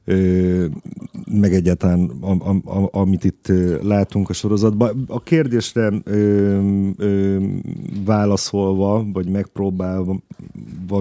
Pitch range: 95-110 Hz